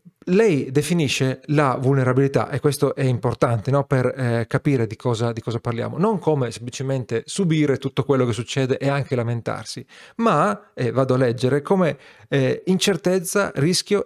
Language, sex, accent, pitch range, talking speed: Italian, male, native, 125-155 Hz, 160 wpm